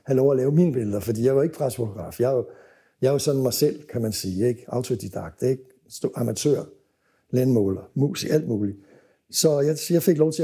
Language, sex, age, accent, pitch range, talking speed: Danish, male, 60-79, native, 130-160 Hz, 205 wpm